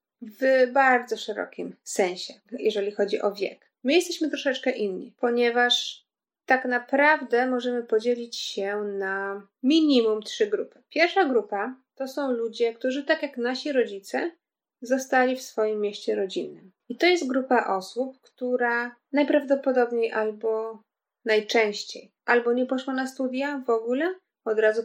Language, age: Polish, 20-39